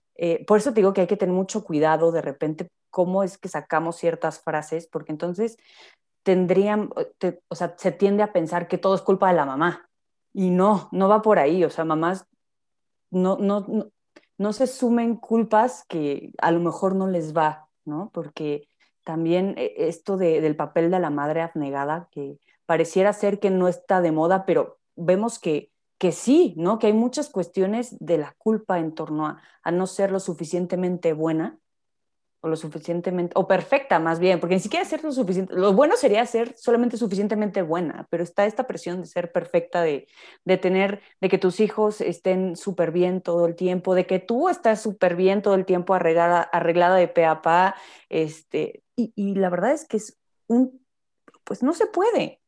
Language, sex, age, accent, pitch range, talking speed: Spanish, female, 30-49, Mexican, 170-210 Hz, 190 wpm